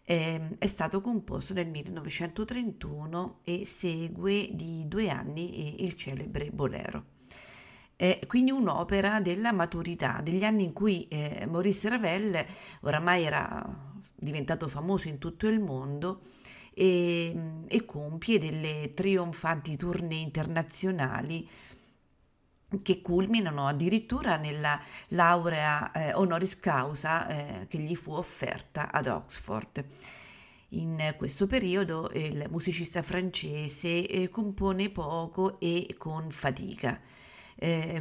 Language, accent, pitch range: Italian, native, 155-190 Hz